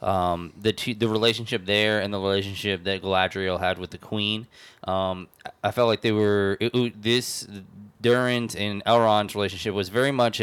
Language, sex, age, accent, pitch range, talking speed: English, male, 20-39, American, 95-120 Hz, 180 wpm